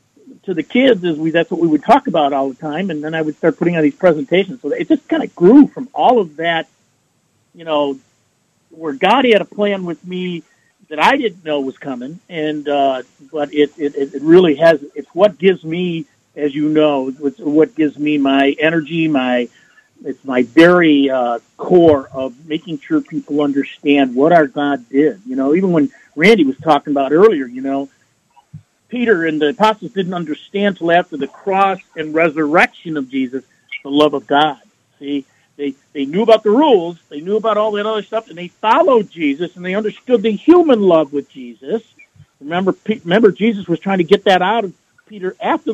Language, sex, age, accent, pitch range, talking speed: English, male, 50-69, American, 145-195 Hz, 200 wpm